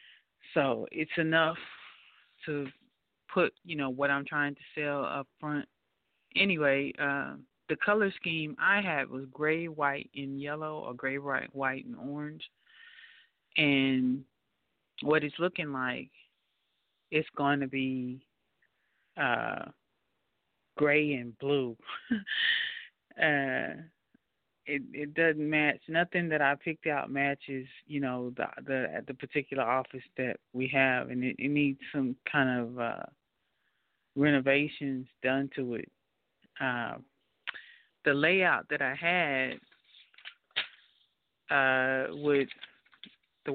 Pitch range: 135-155 Hz